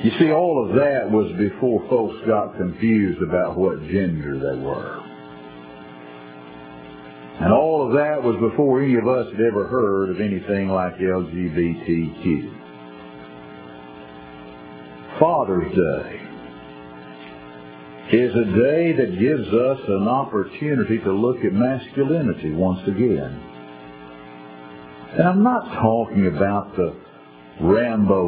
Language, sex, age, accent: English, male, 60-79, American